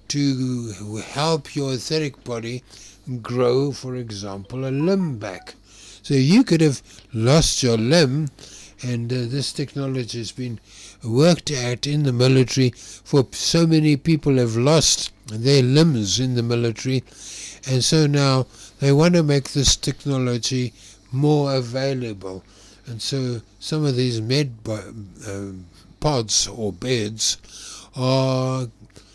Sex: male